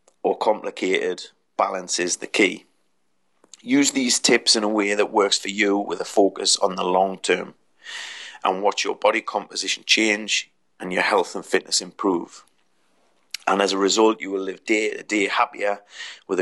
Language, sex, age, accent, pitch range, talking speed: English, male, 30-49, British, 95-125 Hz, 170 wpm